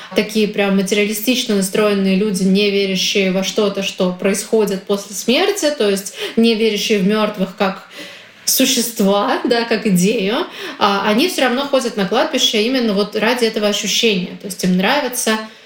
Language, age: Russian, 20-39